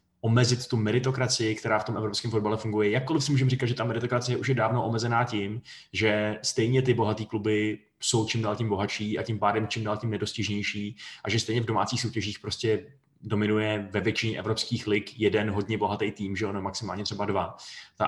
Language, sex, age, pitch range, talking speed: Czech, male, 20-39, 105-125 Hz, 200 wpm